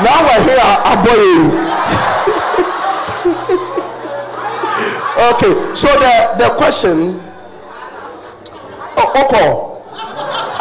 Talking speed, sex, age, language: 60 wpm, male, 50-69, English